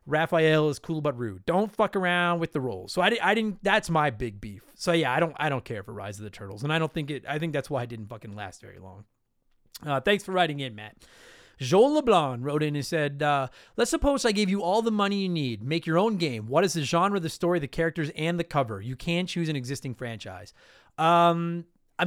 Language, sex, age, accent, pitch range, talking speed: English, male, 30-49, American, 140-190 Hz, 255 wpm